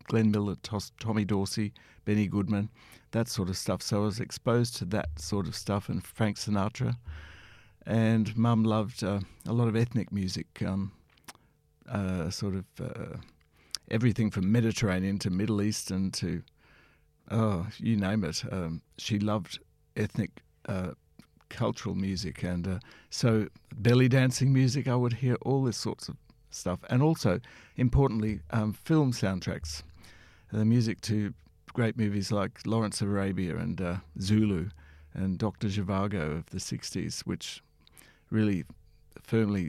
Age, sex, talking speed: 60-79, male, 145 wpm